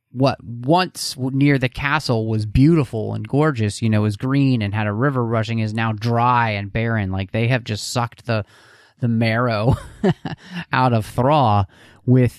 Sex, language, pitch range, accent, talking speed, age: male, English, 110-135 Hz, American, 170 wpm, 30-49